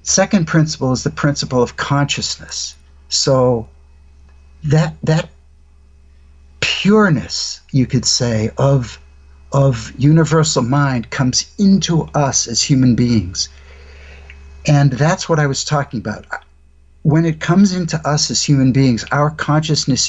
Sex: male